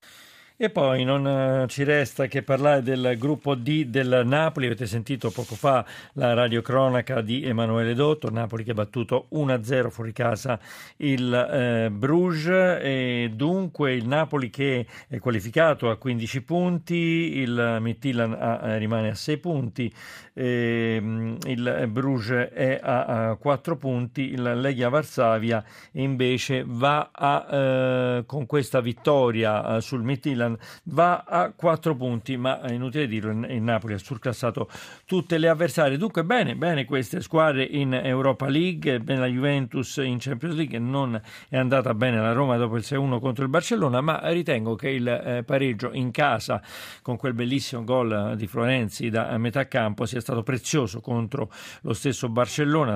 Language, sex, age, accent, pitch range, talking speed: Italian, male, 50-69, native, 120-140 Hz, 150 wpm